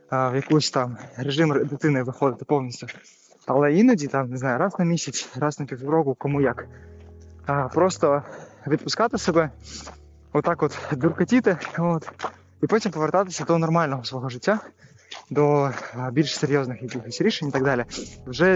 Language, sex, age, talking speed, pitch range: Ukrainian, male, 20-39, 140 wpm, 130-160 Hz